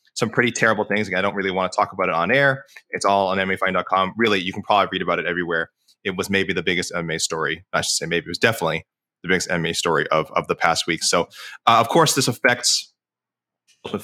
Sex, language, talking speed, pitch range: male, English, 245 wpm, 95-120 Hz